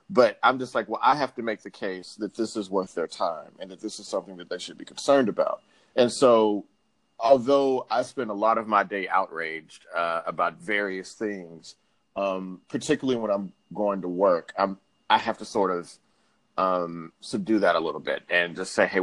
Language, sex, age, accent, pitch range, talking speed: English, male, 30-49, American, 90-120 Hz, 205 wpm